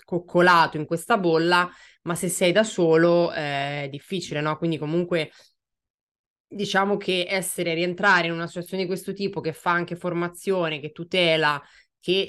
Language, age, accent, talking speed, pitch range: Italian, 20-39, native, 155 wpm, 150-175 Hz